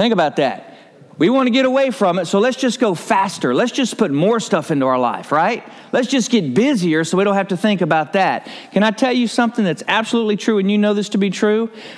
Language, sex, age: English, male, 50-69